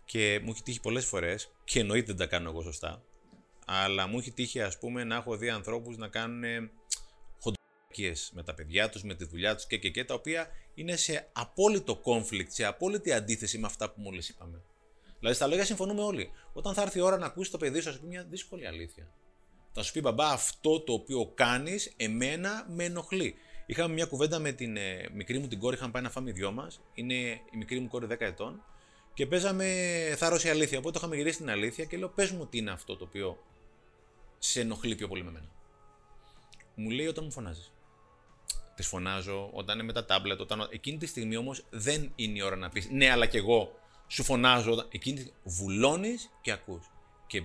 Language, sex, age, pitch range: Greek, male, 30-49, 105-155 Hz